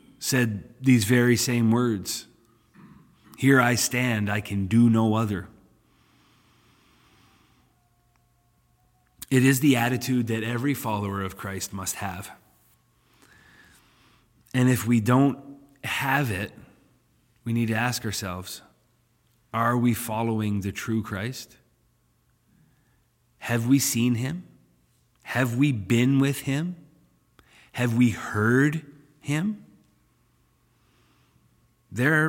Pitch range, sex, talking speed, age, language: 110-130 Hz, male, 100 wpm, 30-49, English